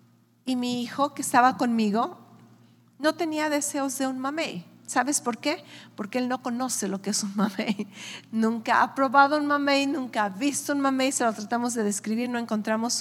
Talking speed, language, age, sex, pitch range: 190 wpm, English, 50-69, female, 195-250 Hz